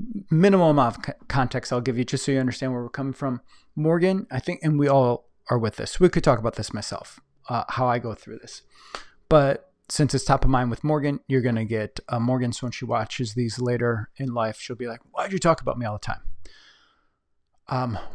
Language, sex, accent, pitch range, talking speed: English, male, American, 120-150 Hz, 230 wpm